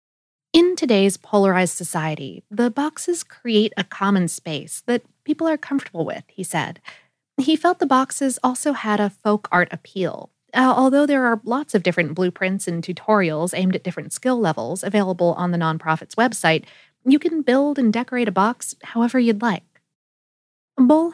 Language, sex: English, female